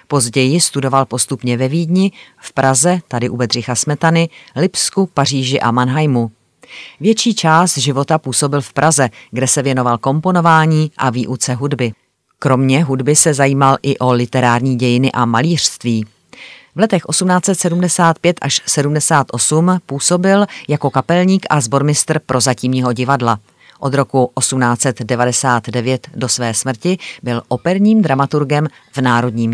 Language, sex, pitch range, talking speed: Czech, female, 125-155 Hz, 125 wpm